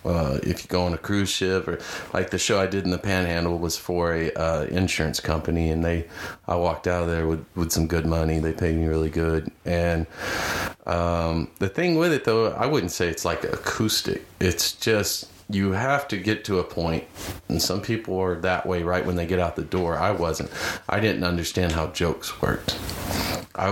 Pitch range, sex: 80-95 Hz, male